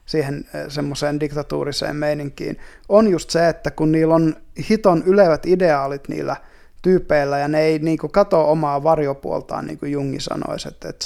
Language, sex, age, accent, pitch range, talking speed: Finnish, male, 20-39, native, 145-165 Hz, 155 wpm